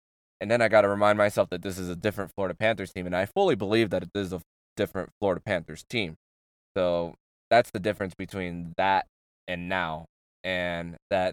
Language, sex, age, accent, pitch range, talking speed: English, male, 20-39, American, 85-100 Hz, 195 wpm